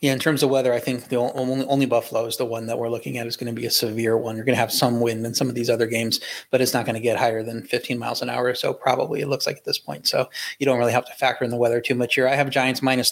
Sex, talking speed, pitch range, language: male, 345 wpm, 115-130 Hz, English